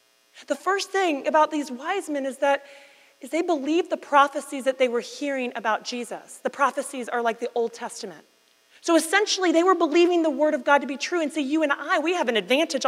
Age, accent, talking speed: 30-49, American, 220 wpm